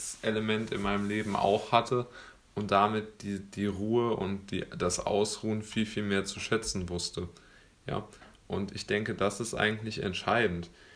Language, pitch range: German, 95-115 Hz